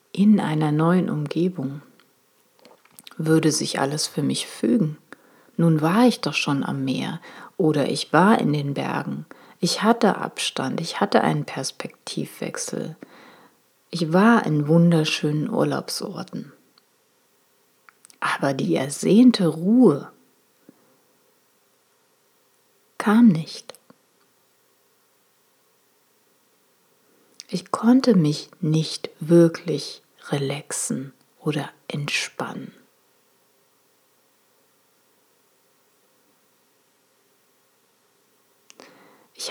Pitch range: 150-200 Hz